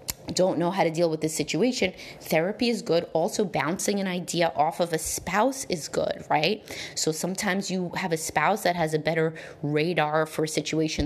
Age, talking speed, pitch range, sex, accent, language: 30-49, 195 wpm, 155-185 Hz, female, American, English